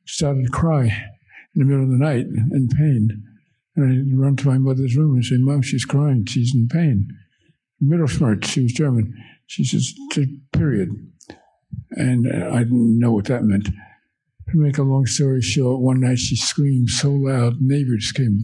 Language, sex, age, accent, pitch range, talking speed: English, male, 60-79, American, 120-140 Hz, 180 wpm